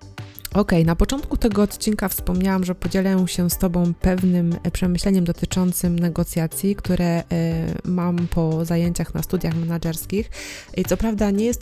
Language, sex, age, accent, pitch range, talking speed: Polish, female, 20-39, native, 165-190 Hz, 140 wpm